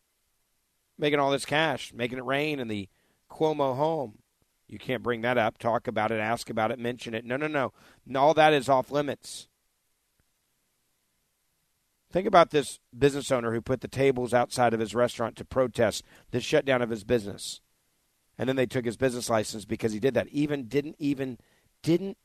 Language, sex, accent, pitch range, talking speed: English, male, American, 110-135 Hz, 180 wpm